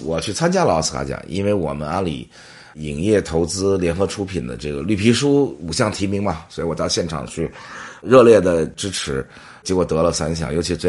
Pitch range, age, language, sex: 80-105 Hz, 30-49, Chinese, male